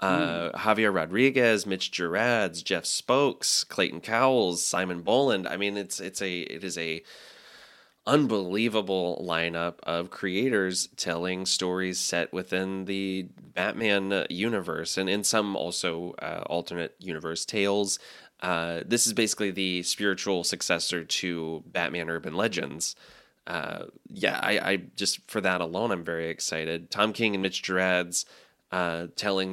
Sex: male